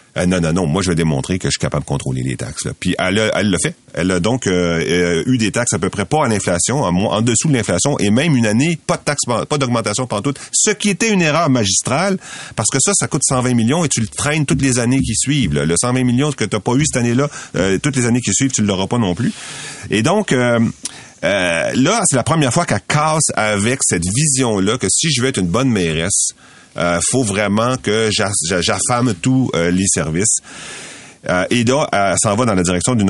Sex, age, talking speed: male, 40-59, 245 wpm